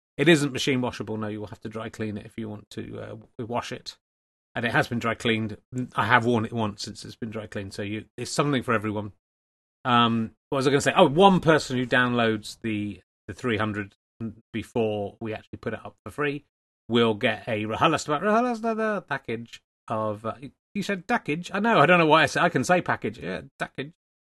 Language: English